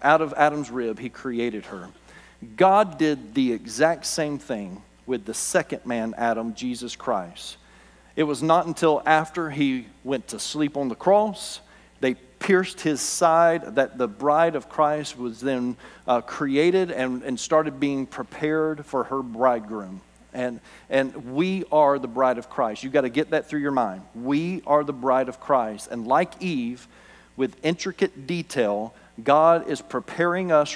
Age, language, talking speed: 40-59, English, 165 wpm